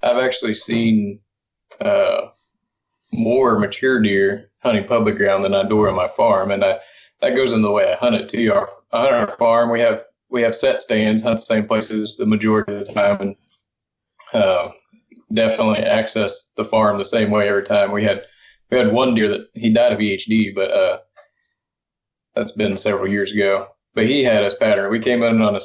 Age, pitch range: 20-39, 105-120 Hz